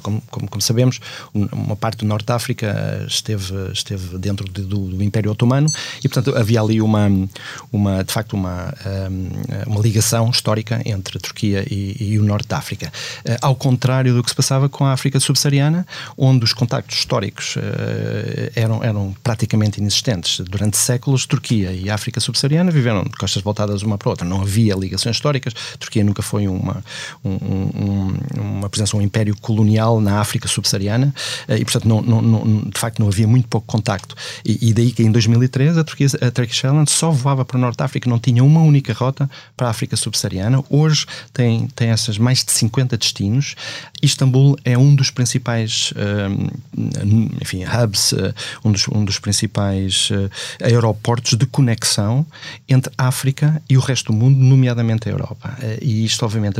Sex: male